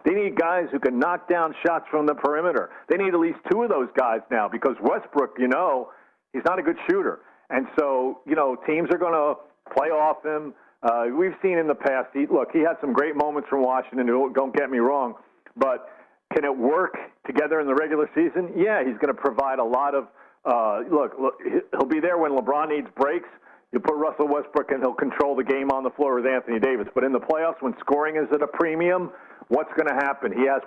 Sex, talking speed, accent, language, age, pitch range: male, 225 wpm, American, English, 50-69, 135-160 Hz